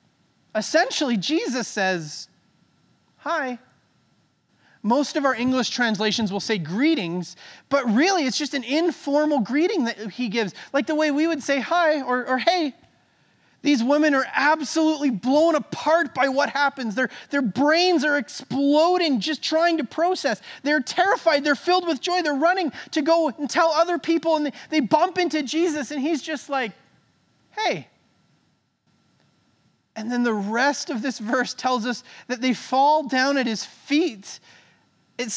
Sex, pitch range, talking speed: male, 215-300 Hz, 160 wpm